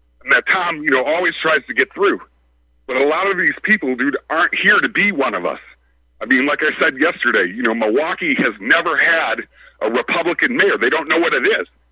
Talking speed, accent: 220 wpm, American